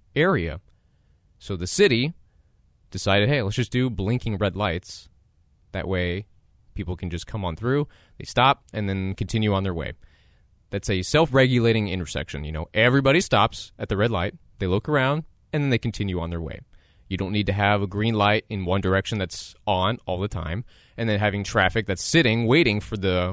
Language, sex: English, male